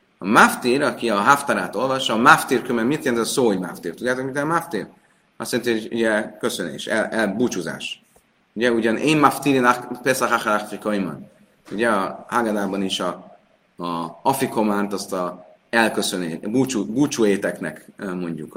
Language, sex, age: Hungarian, male, 30-49